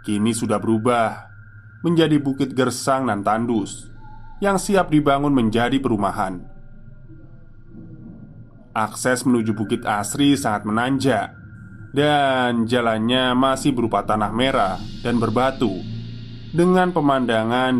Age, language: 20-39, Indonesian